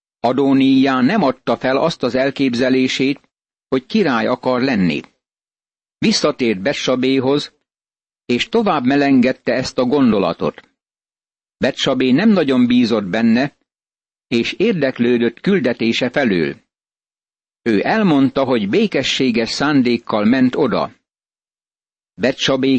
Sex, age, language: male, 60-79, Hungarian